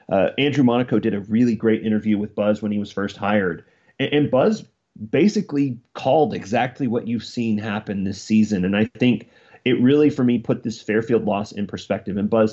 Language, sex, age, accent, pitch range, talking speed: English, male, 30-49, American, 105-125 Hz, 200 wpm